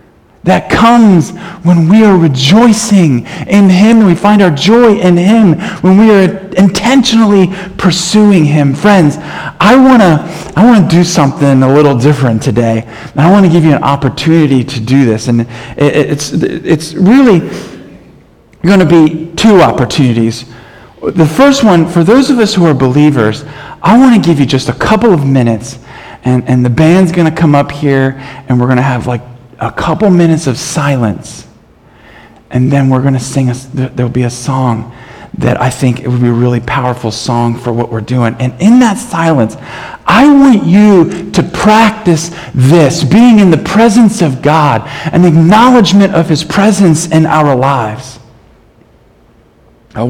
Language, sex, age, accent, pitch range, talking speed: English, male, 40-59, American, 125-190 Hz, 170 wpm